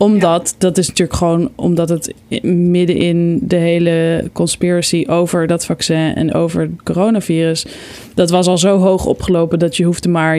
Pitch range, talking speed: 165-190 Hz, 170 wpm